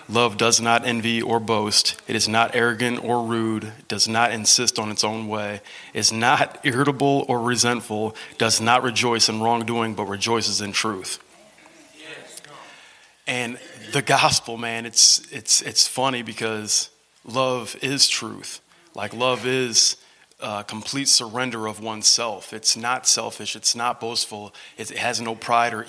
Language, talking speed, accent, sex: English, 150 wpm, American, male